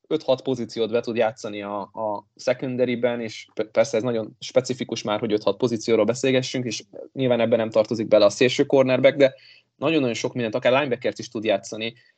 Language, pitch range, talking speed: Hungarian, 110-130 Hz, 185 wpm